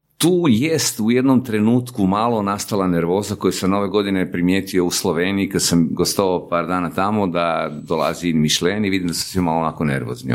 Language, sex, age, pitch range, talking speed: Croatian, male, 50-69, 80-100 Hz, 185 wpm